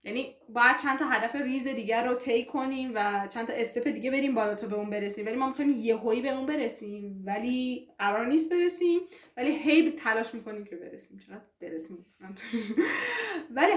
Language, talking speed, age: Persian, 180 wpm, 10-29